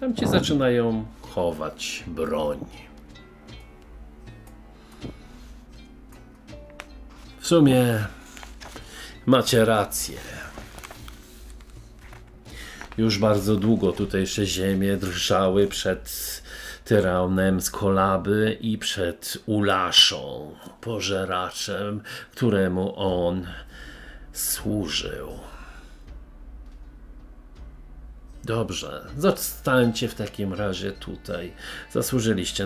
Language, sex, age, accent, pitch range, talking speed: Polish, male, 50-69, native, 90-115 Hz, 60 wpm